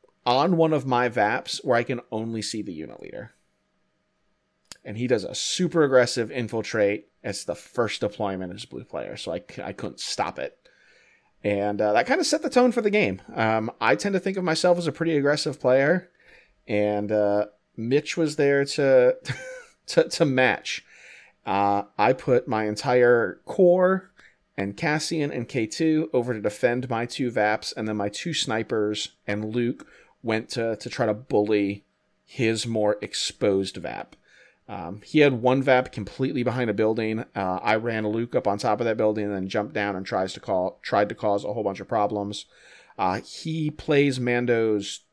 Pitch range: 105-145 Hz